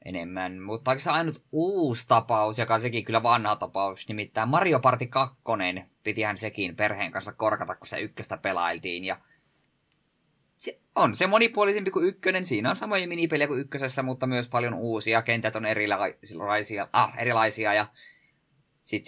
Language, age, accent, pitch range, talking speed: Finnish, 20-39, native, 105-140 Hz, 150 wpm